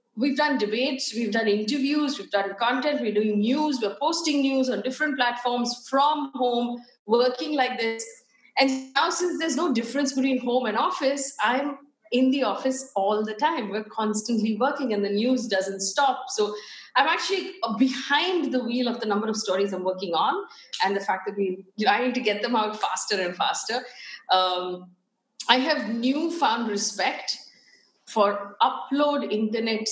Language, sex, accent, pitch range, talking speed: Hindi, female, native, 215-285 Hz, 170 wpm